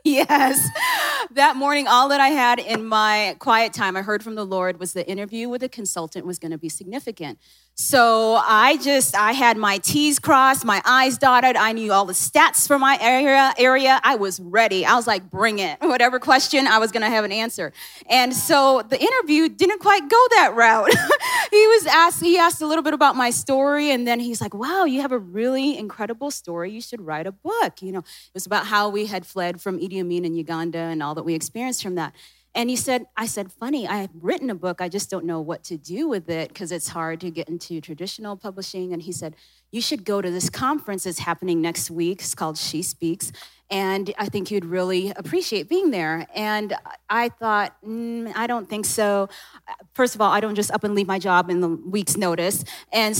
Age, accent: 30-49, American